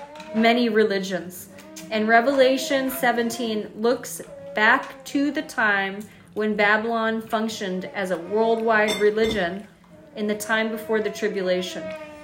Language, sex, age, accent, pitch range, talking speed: English, female, 40-59, American, 205-245 Hz, 115 wpm